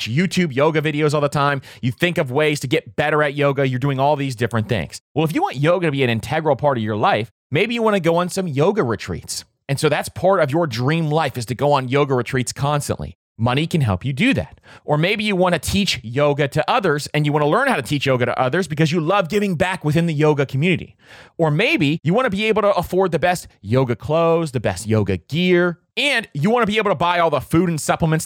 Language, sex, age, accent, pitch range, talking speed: English, male, 30-49, American, 135-180 Hz, 260 wpm